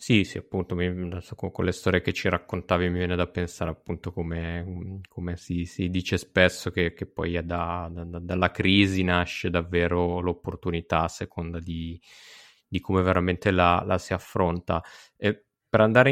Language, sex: Italian, male